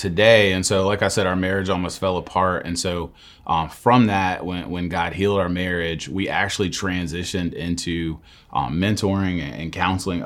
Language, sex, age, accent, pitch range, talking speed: English, male, 30-49, American, 85-100 Hz, 175 wpm